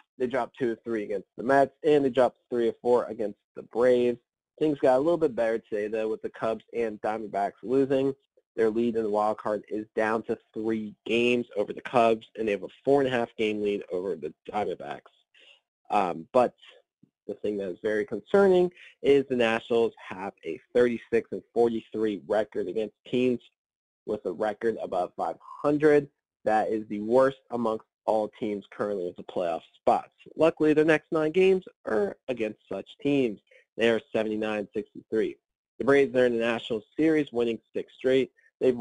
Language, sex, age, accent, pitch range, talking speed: English, male, 30-49, American, 110-140 Hz, 170 wpm